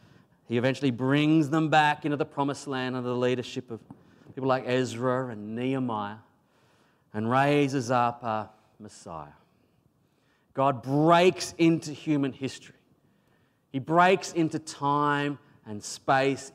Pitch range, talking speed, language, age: 120-155 Hz, 125 wpm, English, 30-49